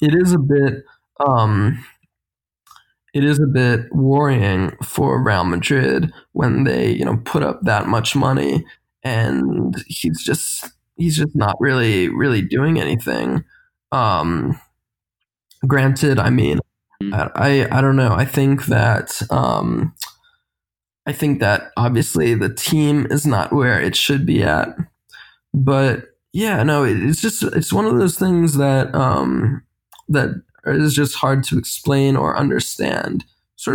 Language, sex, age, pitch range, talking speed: English, male, 20-39, 130-145 Hz, 140 wpm